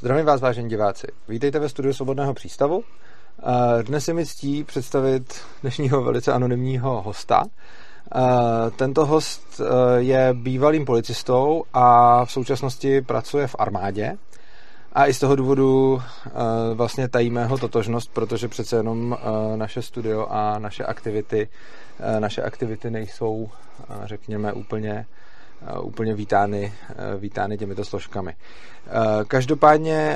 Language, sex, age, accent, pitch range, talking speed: Czech, male, 30-49, native, 115-135 Hz, 110 wpm